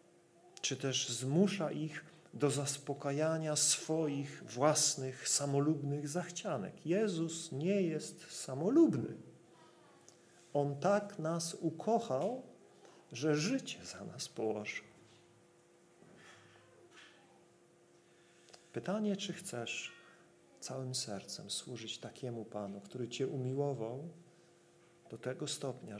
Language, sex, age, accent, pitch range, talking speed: Polish, male, 40-59, native, 130-170 Hz, 85 wpm